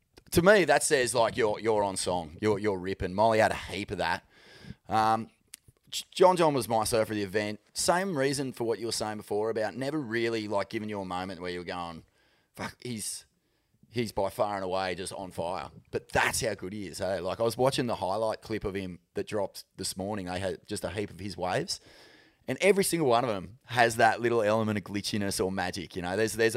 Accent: Australian